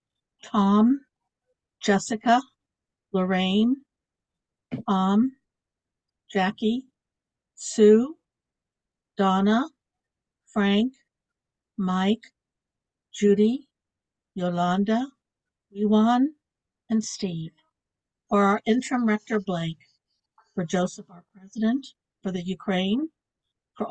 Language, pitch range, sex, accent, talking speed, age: English, 190-225 Hz, female, American, 70 wpm, 60-79